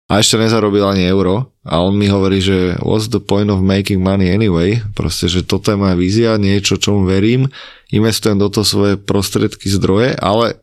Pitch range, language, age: 95-110 Hz, Slovak, 20-39